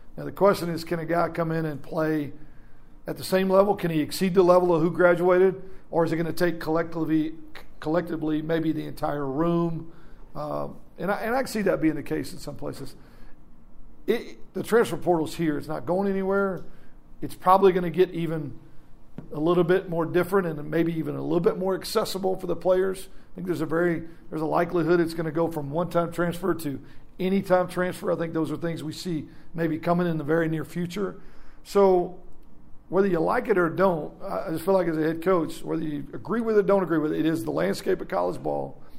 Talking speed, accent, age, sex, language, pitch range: 220 wpm, American, 50-69, male, English, 155-185 Hz